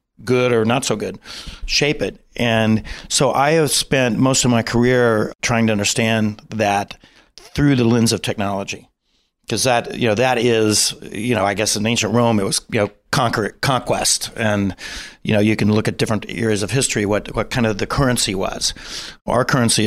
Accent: American